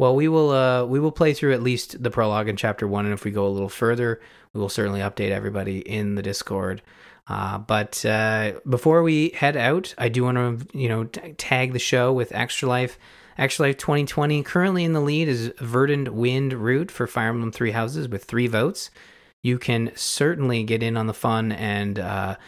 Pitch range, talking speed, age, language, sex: 105-135 Hz, 210 wpm, 20-39, English, male